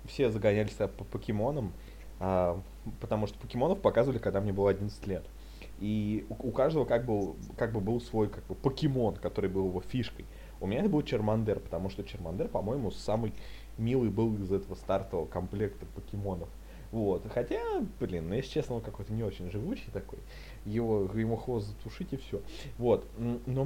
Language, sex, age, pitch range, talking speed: Russian, male, 20-39, 100-145 Hz, 170 wpm